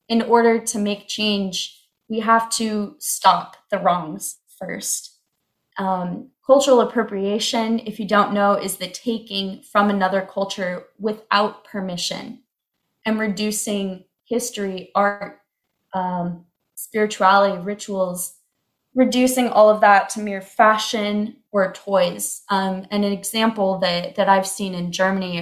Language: German